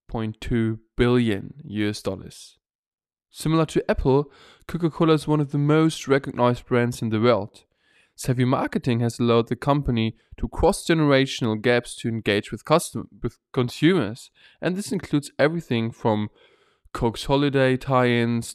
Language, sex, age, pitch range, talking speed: German, male, 10-29, 110-140 Hz, 135 wpm